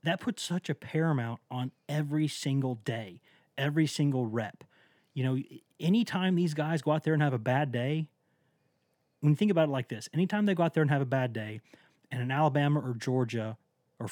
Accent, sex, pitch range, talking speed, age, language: American, male, 125-155 Hz, 205 wpm, 30-49, English